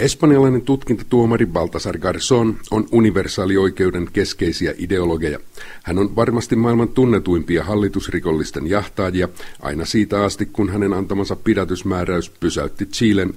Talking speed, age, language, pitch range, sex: 110 wpm, 50-69, Finnish, 90-105 Hz, male